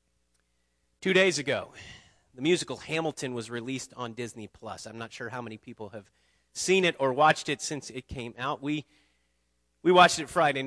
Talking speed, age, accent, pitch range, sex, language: 180 wpm, 40-59, American, 95-150 Hz, male, English